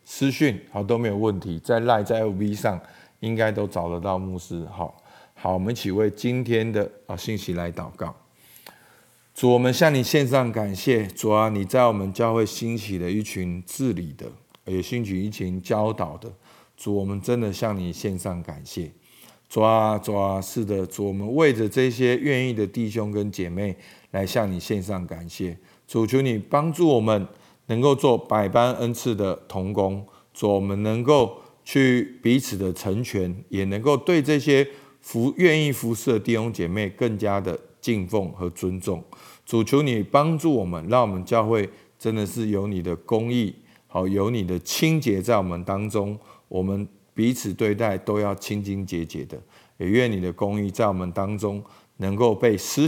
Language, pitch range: Chinese, 95-120 Hz